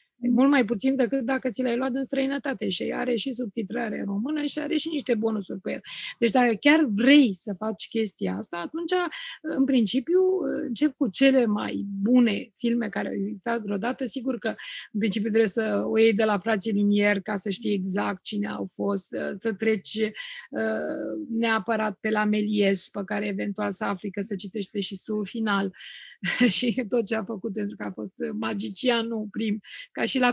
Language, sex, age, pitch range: Romanian, female, 20-39, 215-260 Hz